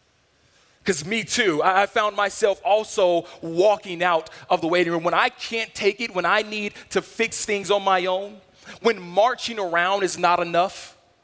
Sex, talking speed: male, 175 wpm